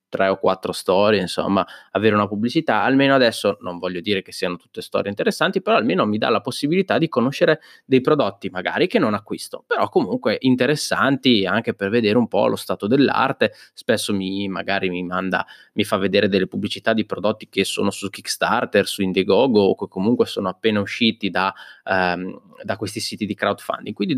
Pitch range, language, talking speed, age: 100-140 Hz, Italian, 185 wpm, 20-39